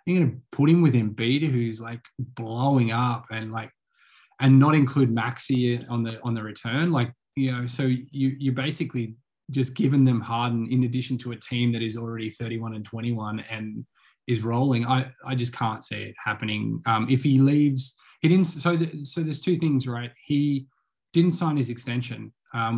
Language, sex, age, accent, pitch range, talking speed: English, male, 20-39, Australian, 115-135 Hz, 200 wpm